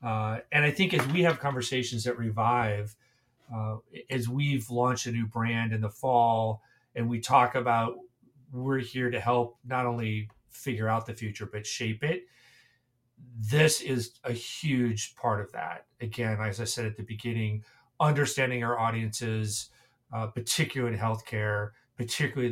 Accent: American